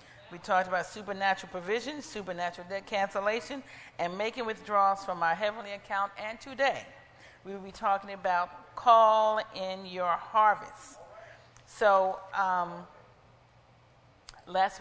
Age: 40-59